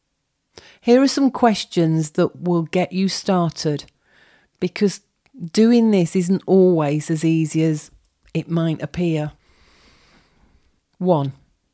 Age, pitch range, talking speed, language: 40-59, 155-190 Hz, 105 wpm, English